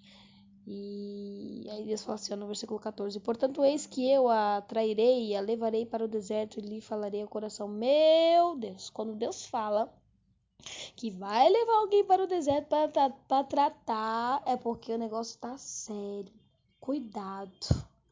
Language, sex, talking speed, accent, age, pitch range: Portuguese, female, 150 wpm, Brazilian, 10-29, 210-265 Hz